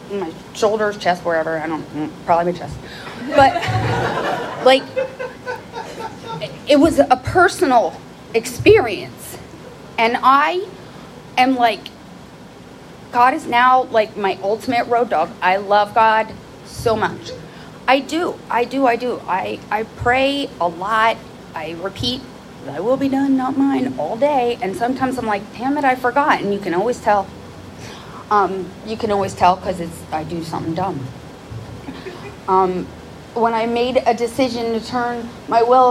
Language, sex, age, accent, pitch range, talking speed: English, female, 30-49, American, 185-260 Hz, 145 wpm